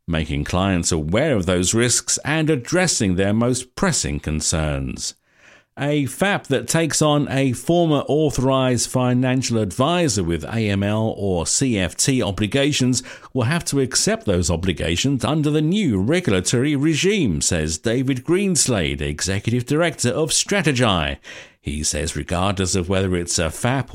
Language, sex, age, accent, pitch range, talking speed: English, male, 50-69, British, 90-140 Hz, 135 wpm